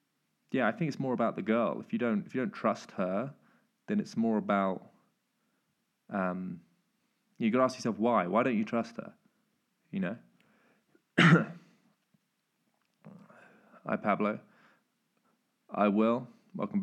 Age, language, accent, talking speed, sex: 20-39, English, British, 135 wpm, male